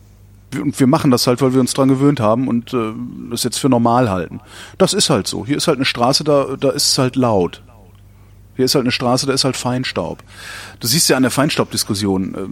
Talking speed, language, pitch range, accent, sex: 230 wpm, German, 100-140 Hz, German, male